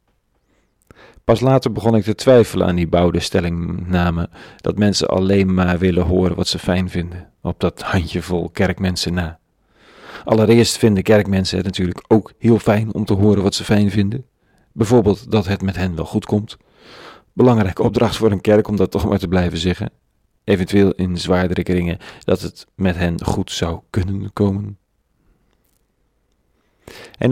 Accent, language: Dutch, Dutch